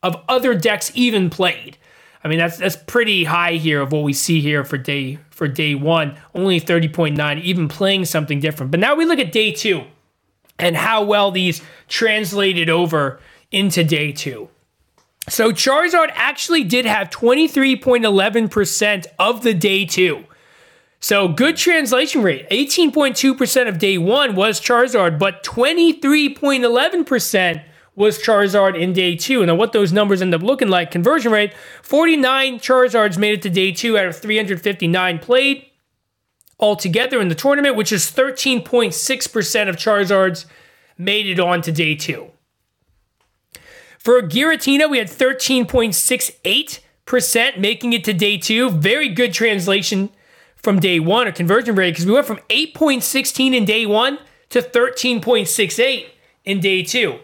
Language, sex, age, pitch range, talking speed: English, male, 20-39, 175-250 Hz, 145 wpm